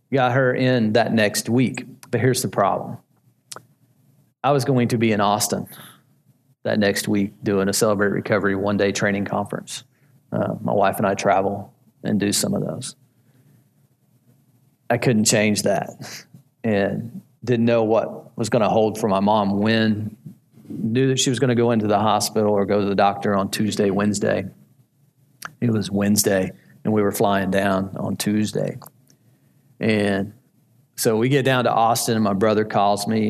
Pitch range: 105-125 Hz